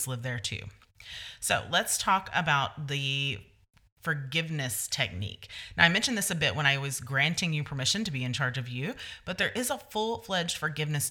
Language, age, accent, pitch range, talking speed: English, 30-49, American, 135-200 Hz, 190 wpm